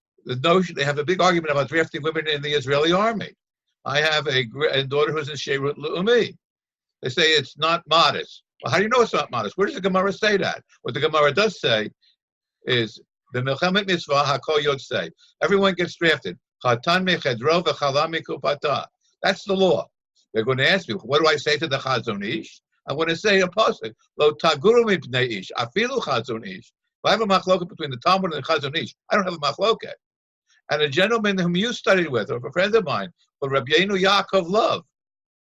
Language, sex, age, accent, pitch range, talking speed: English, male, 60-79, American, 140-190 Hz, 175 wpm